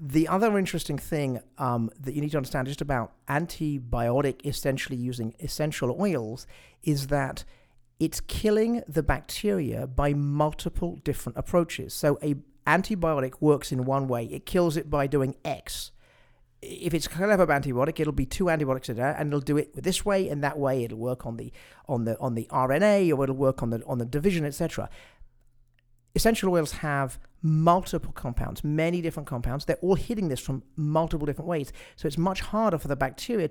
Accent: British